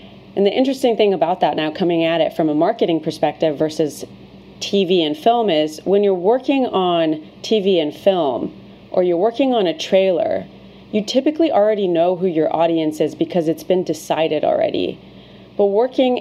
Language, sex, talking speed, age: English, female, 175 wpm, 30-49